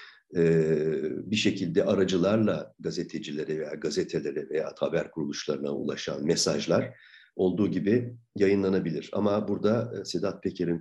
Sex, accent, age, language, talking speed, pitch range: male, native, 50-69, Turkish, 100 wpm, 85-115 Hz